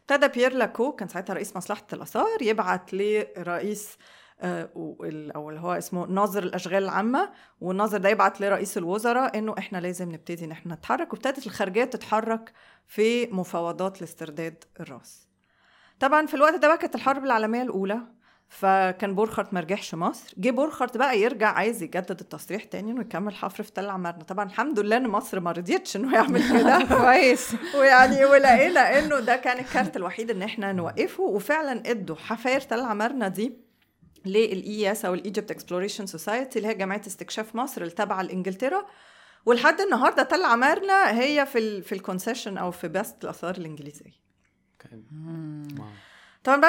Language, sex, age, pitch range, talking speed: Arabic, female, 30-49, 185-250 Hz, 150 wpm